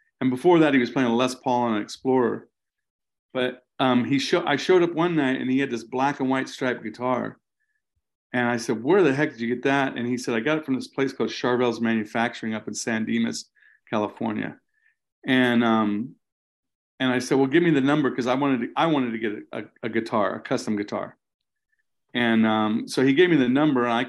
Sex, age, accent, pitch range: male, 40-59, American, 115-135 Hz